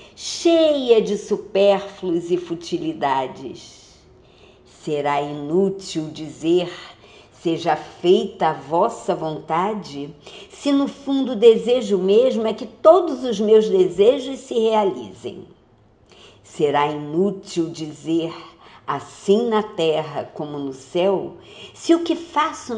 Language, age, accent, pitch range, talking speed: Portuguese, 50-69, Brazilian, 160-220 Hz, 105 wpm